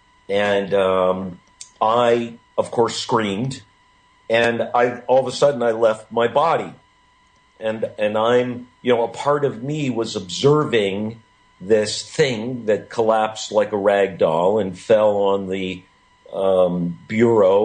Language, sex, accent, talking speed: English, male, American, 140 wpm